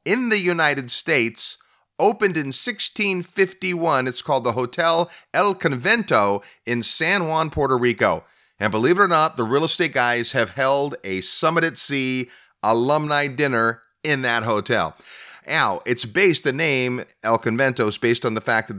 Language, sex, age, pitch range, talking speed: English, male, 30-49, 120-170 Hz, 165 wpm